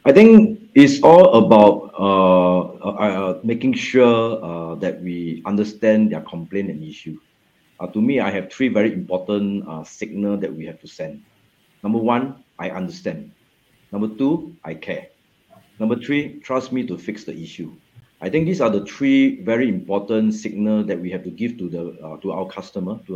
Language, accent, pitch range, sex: English, Malaysian, 95-120 Hz, male